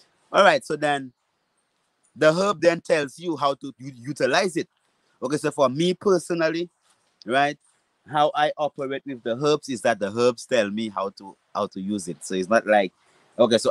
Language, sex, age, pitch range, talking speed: English, male, 30-49, 115-150 Hz, 195 wpm